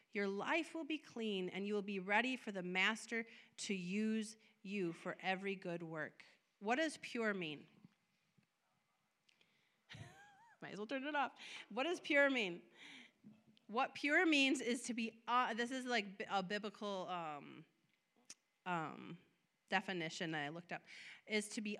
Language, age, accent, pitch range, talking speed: English, 30-49, American, 195-275 Hz, 155 wpm